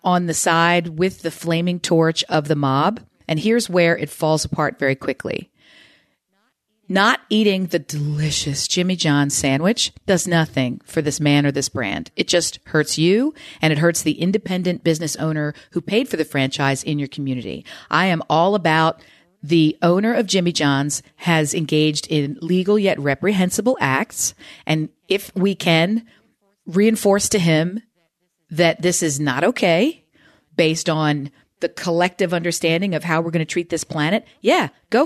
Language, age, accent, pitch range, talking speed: English, 40-59, American, 155-185 Hz, 165 wpm